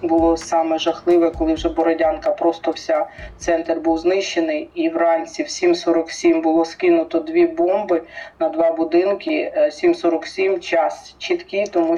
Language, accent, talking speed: Ukrainian, native, 130 wpm